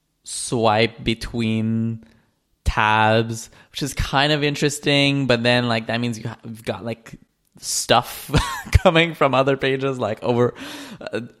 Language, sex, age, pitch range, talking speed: English, male, 20-39, 115-140 Hz, 125 wpm